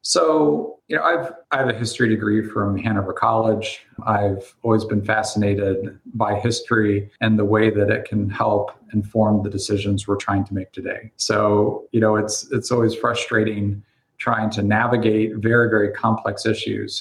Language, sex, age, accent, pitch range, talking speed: English, male, 40-59, American, 105-115 Hz, 165 wpm